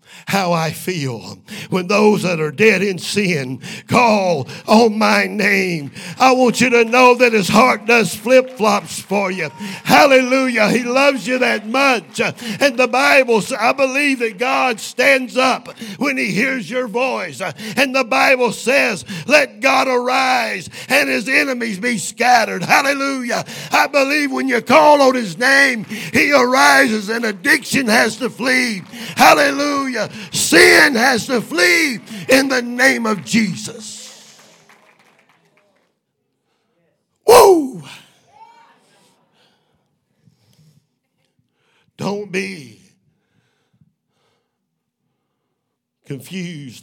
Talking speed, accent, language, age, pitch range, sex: 115 wpm, American, English, 50-69, 170-255 Hz, male